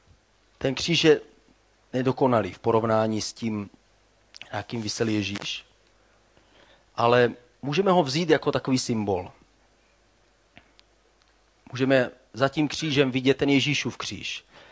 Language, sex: Czech, male